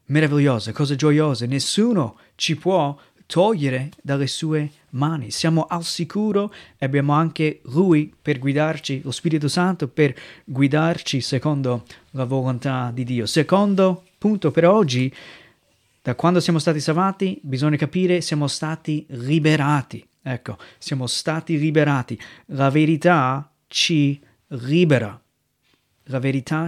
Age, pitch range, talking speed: 30-49, 140-170 Hz, 120 wpm